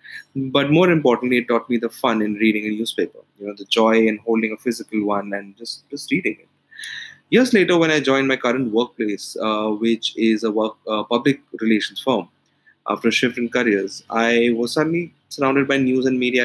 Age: 20-39